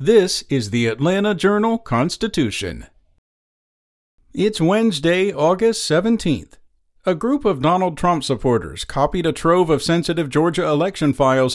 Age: 50-69